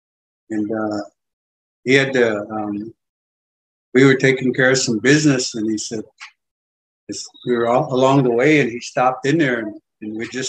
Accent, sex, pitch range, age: American, male, 110-150 Hz, 60-79